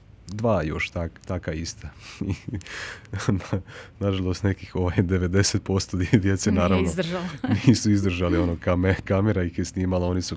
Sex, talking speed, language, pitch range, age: male, 135 wpm, Croatian, 85-105 Hz, 30-49